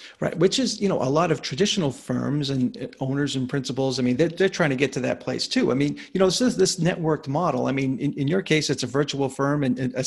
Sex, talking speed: male, 280 wpm